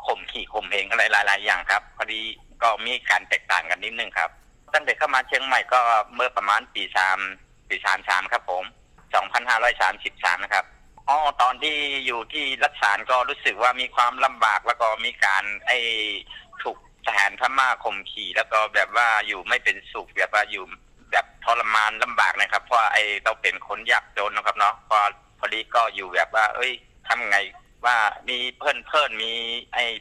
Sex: male